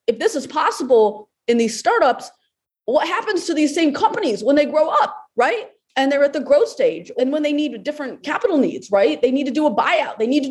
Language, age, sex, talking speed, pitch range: English, 20-39, female, 235 wpm, 215-295 Hz